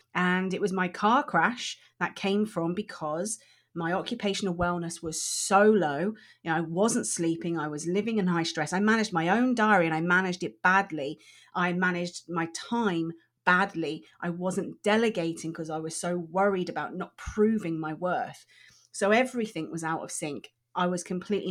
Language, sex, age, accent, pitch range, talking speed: English, female, 30-49, British, 170-235 Hz, 175 wpm